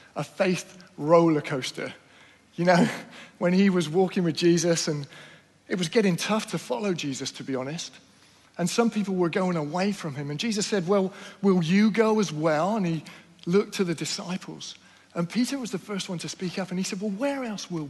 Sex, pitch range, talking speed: male, 135-195 Hz, 210 wpm